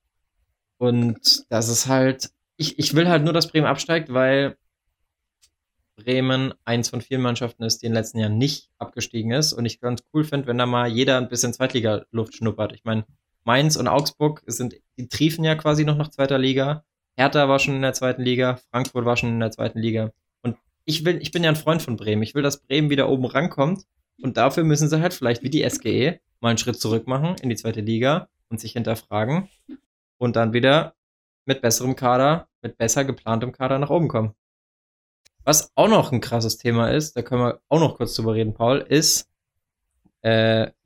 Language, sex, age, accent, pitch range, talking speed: German, male, 20-39, German, 115-140 Hz, 200 wpm